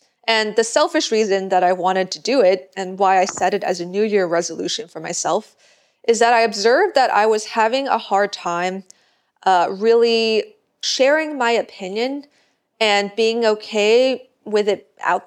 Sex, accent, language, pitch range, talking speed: female, American, English, 185-225 Hz, 175 wpm